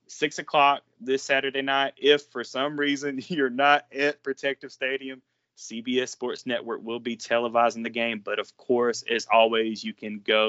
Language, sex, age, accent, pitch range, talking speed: English, male, 20-39, American, 110-130 Hz, 170 wpm